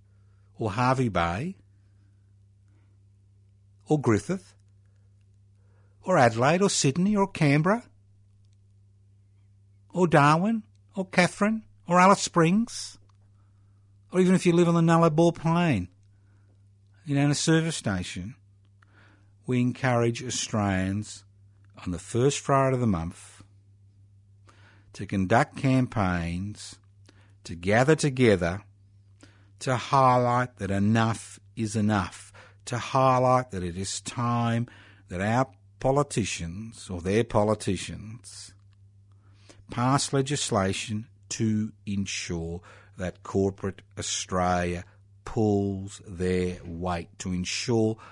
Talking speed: 100 wpm